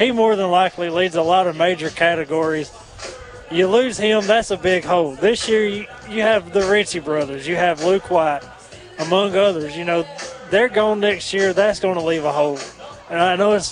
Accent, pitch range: American, 165-200 Hz